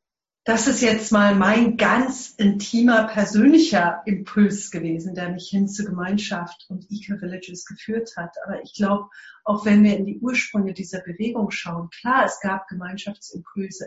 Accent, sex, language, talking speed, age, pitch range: German, female, English, 155 wpm, 40-59, 185-215 Hz